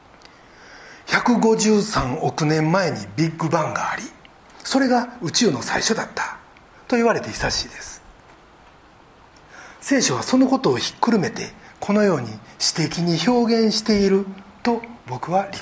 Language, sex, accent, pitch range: Japanese, male, native, 145-230 Hz